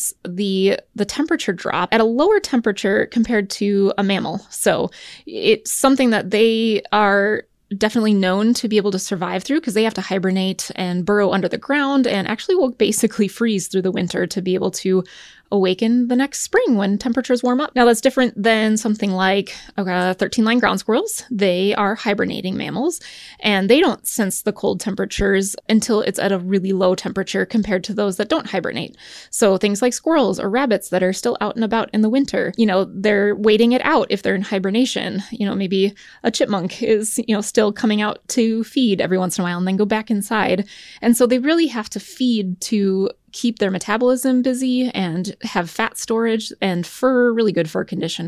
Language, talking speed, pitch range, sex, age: English, 200 wpm, 195-240 Hz, female, 20-39